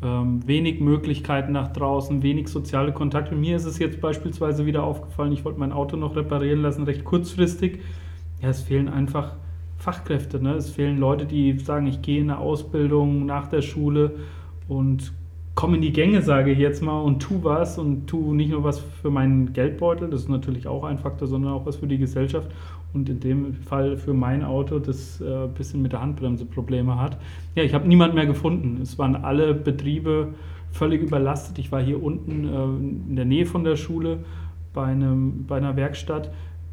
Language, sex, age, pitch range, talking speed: German, male, 30-49, 115-145 Hz, 195 wpm